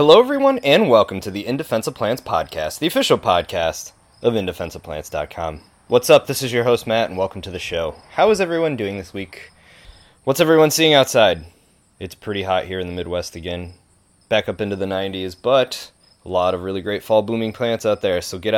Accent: American